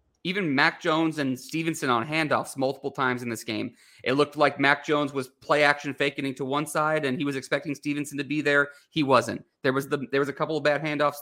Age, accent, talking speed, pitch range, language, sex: 30-49, American, 230 wpm, 135-160 Hz, English, male